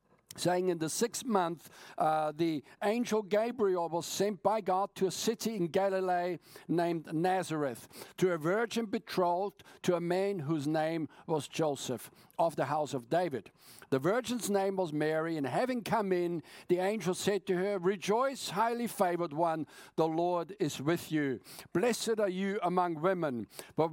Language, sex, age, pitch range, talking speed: English, male, 50-69, 160-210 Hz, 165 wpm